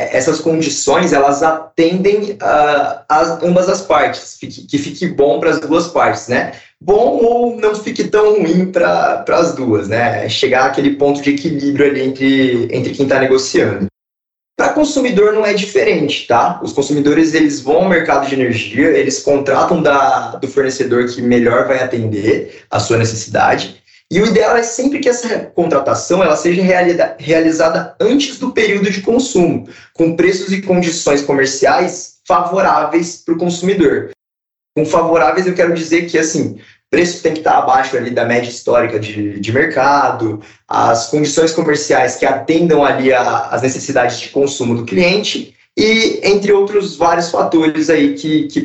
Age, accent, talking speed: 20-39, Brazilian, 155 wpm